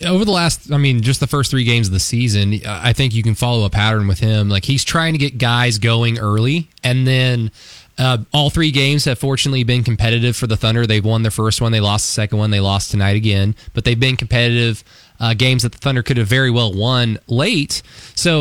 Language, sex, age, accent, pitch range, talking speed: English, male, 20-39, American, 110-130 Hz, 240 wpm